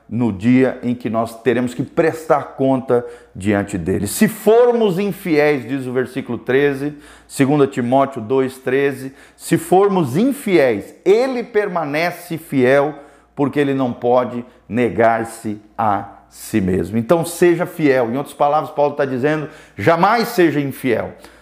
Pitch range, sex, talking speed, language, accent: 135-185 Hz, male, 135 wpm, Portuguese, Brazilian